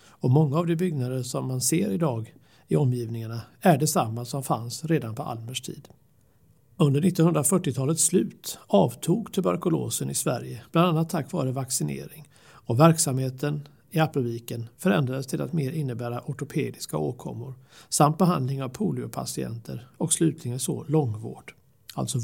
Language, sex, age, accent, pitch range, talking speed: Swedish, male, 60-79, native, 120-155 Hz, 140 wpm